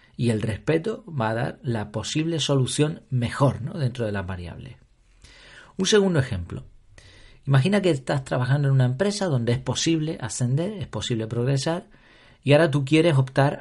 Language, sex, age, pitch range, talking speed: Spanish, male, 40-59, 120-155 Hz, 160 wpm